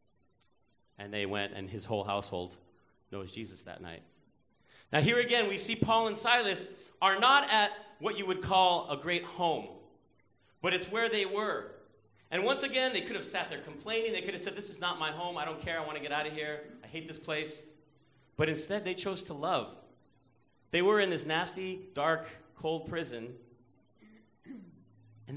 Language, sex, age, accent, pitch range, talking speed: English, male, 30-49, American, 115-175 Hz, 190 wpm